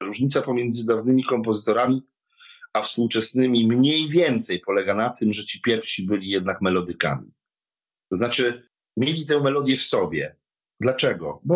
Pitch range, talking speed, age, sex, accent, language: 105-145 Hz, 135 wpm, 40-59, male, native, Polish